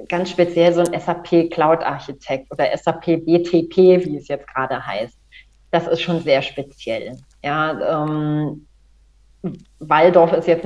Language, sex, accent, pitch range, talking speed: German, female, German, 150-180 Hz, 130 wpm